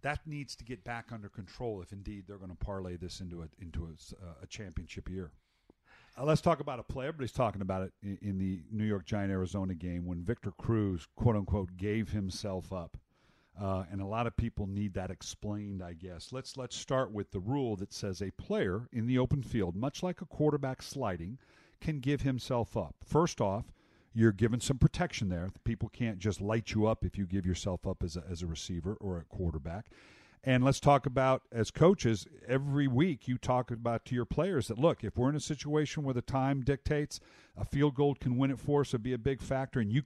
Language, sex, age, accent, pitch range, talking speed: English, male, 50-69, American, 100-135 Hz, 220 wpm